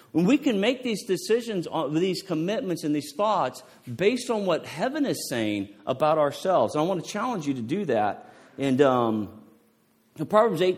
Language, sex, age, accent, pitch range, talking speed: English, male, 40-59, American, 105-155 Hz, 175 wpm